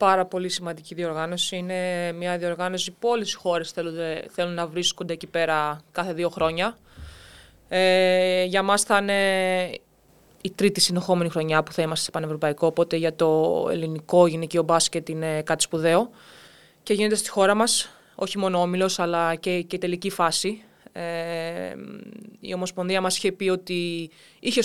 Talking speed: 155 wpm